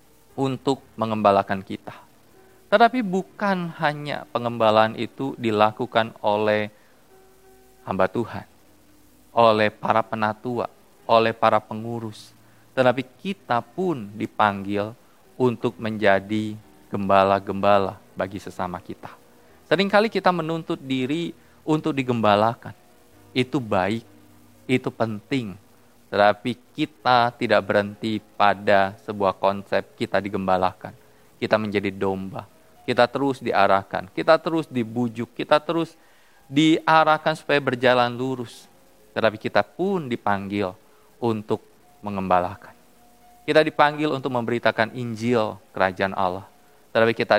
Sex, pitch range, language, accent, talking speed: male, 100-130 Hz, Indonesian, native, 95 wpm